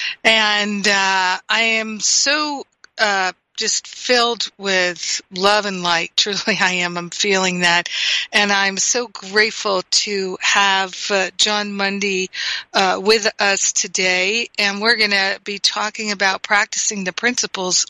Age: 50-69